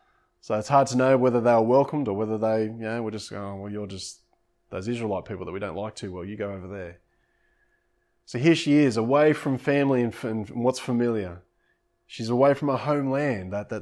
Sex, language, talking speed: male, English, 215 wpm